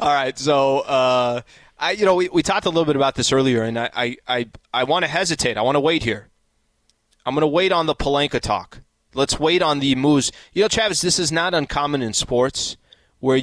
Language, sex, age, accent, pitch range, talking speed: English, male, 20-39, American, 110-145 Hz, 230 wpm